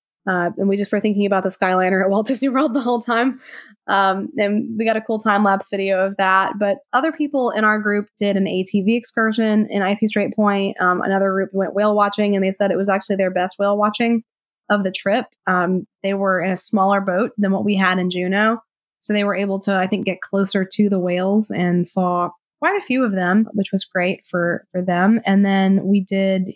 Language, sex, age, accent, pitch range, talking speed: English, female, 20-39, American, 190-215 Hz, 230 wpm